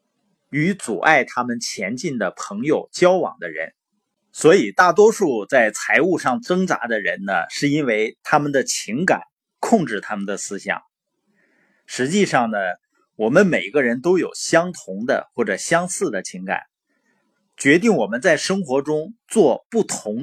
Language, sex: Chinese, male